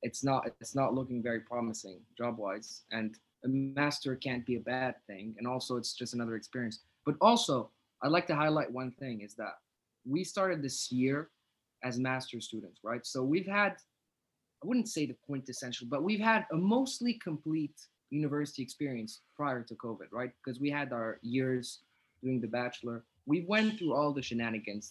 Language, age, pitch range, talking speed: English, 20-39, 120-145 Hz, 180 wpm